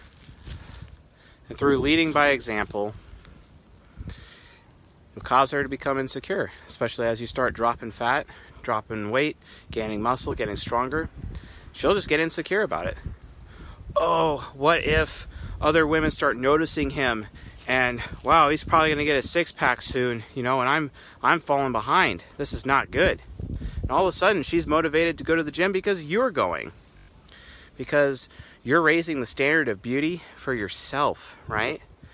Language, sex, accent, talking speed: English, male, American, 155 wpm